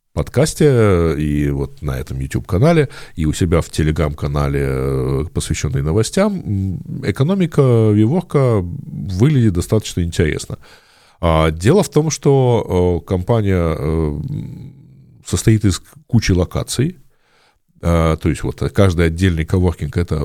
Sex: male